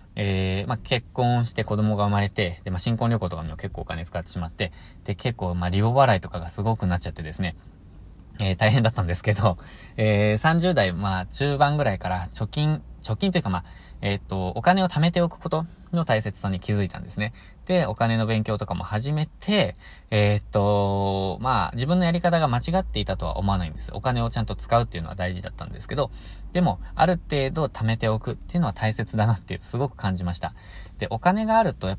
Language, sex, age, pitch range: Japanese, male, 20-39, 90-120 Hz